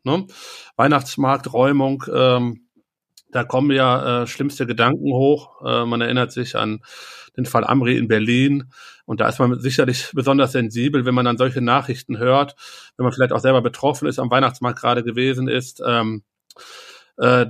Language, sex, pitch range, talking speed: German, male, 120-135 Hz, 155 wpm